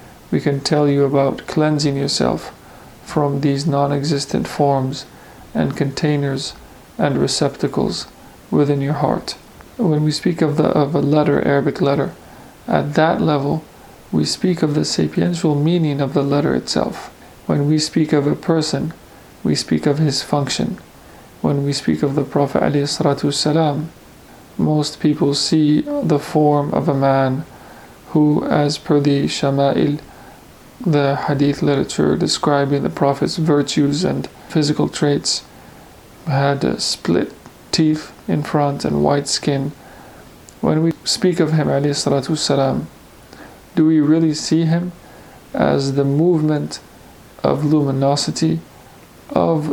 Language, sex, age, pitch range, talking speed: English, male, 40-59, 140-155 Hz, 130 wpm